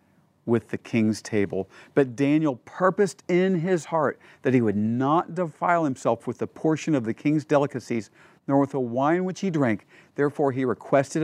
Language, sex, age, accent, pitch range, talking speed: English, male, 50-69, American, 125-155 Hz, 175 wpm